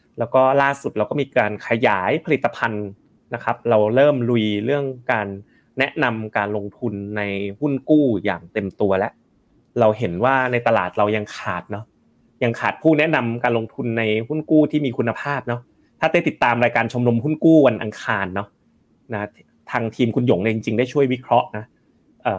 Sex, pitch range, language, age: male, 110-135 Hz, Thai, 30-49